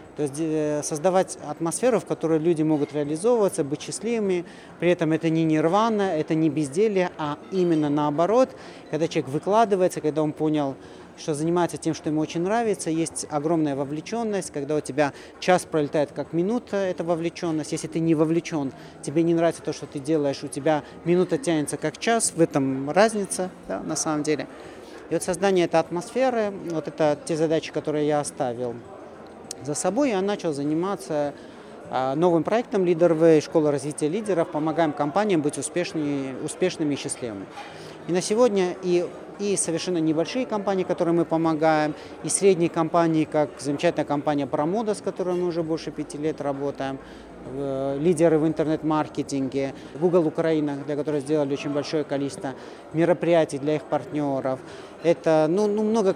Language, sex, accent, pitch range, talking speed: Russian, male, native, 150-180 Hz, 155 wpm